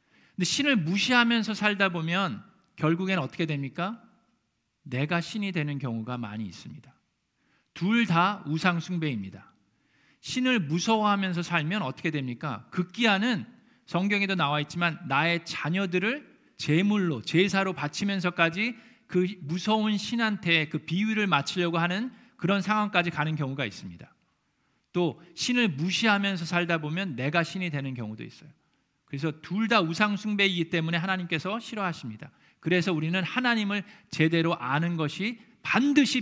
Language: Korean